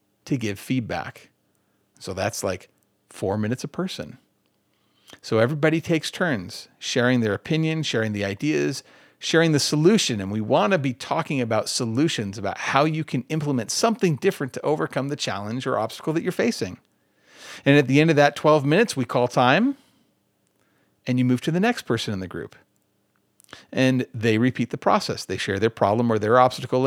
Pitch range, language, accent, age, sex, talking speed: 115-165 Hz, English, American, 40-59, male, 180 wpm